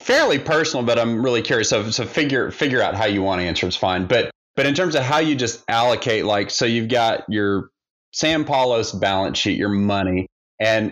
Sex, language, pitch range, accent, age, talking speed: male, English, 100-120 Hz, American, 30-49, 215 wpm